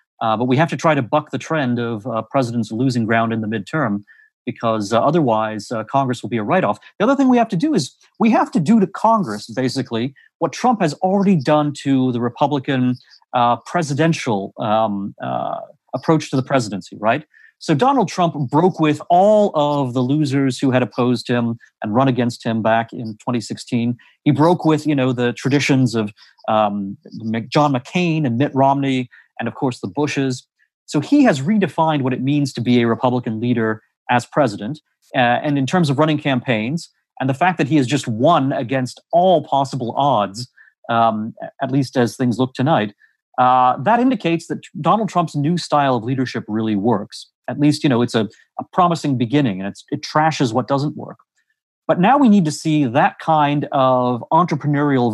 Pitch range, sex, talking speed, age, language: 120-155 Hz, male, 190 wpm, 30-49, English